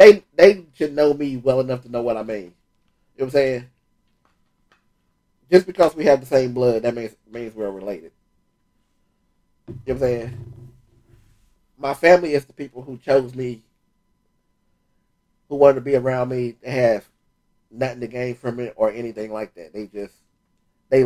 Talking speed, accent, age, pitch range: 175 wpm, American, 30-49, 120-145 Hz